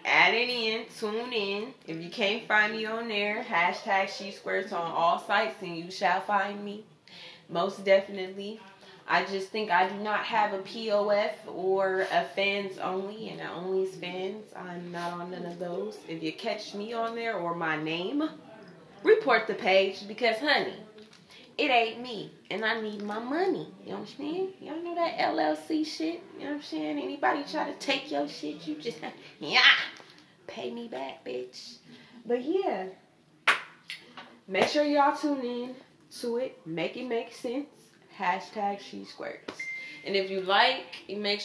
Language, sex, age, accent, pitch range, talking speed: English, female, 20-39, American, 180-225 Hz, 170 wpm